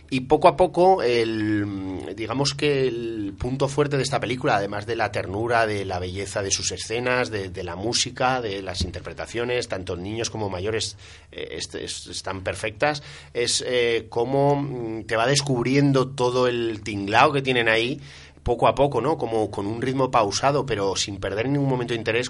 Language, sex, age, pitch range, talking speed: Spanish, male, 30-49, 90-120 Hz, 180 wpm